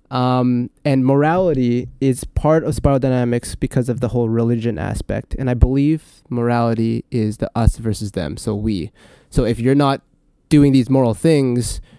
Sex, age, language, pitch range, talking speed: male, 20-39, English, 115-135 Hz, 165 wpm